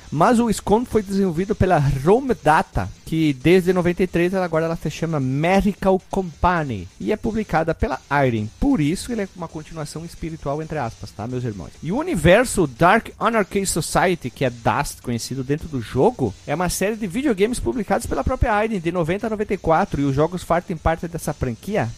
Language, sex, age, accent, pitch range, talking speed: Portuguese, male, 40-59, Brazilian, 145-200 Hz, 185 wpm